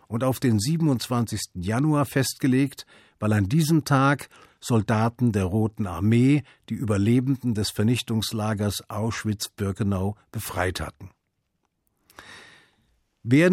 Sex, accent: male, German